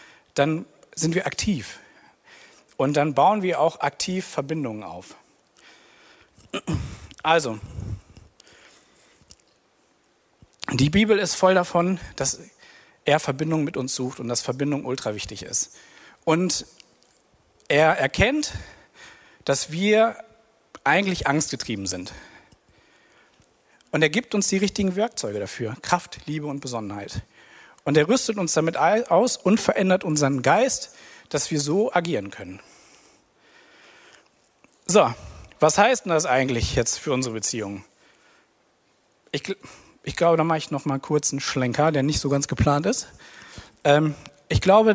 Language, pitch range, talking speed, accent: German, 135-185 Hz, 125 wpm, German